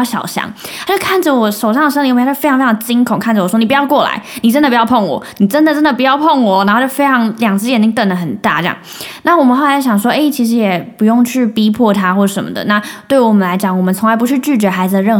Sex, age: female, 10-29